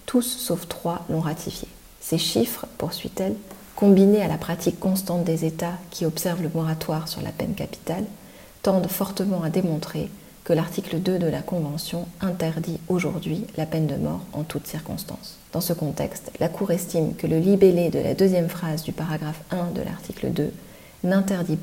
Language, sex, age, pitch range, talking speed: French, female, 40-59, 160-185 Hz, 170 wpm